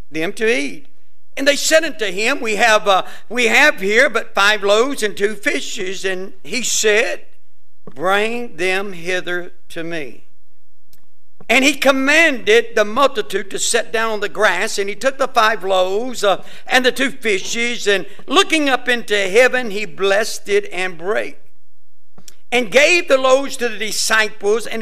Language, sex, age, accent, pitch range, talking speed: English, male, 60-79, American, 195-250 Hz, 165 wpm